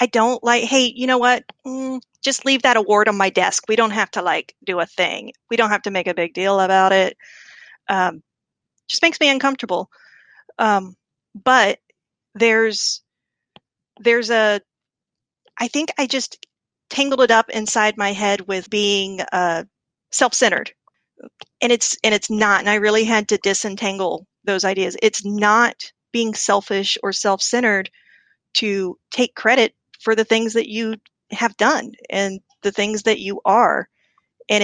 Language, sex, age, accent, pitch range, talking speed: English, female, 40-59, American, 195-235 Hz, 160 wpm